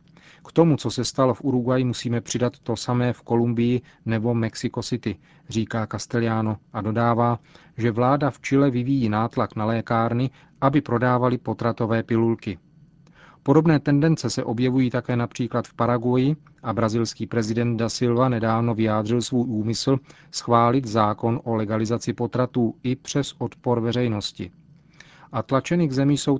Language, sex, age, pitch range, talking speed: Czech, male, 40-59, 115-140 Hz, 145 wpm